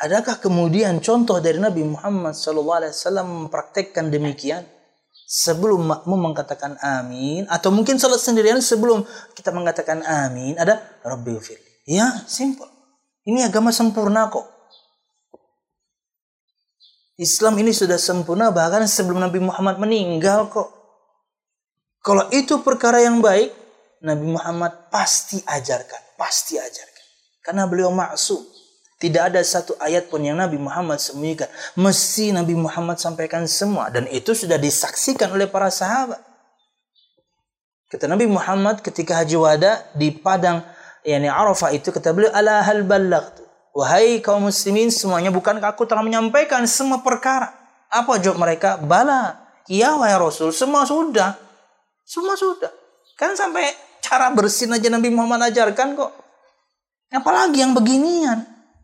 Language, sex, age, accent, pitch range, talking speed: Indonesian, male, 20-39, native, 170-235 Hz, 125 wpm